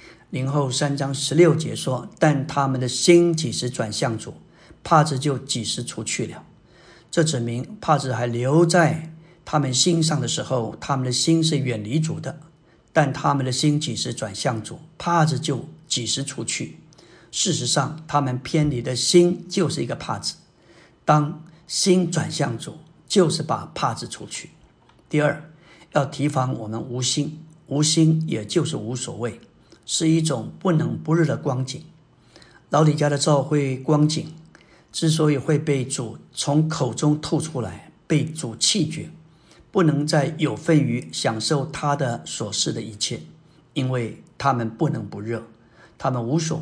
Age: 50-69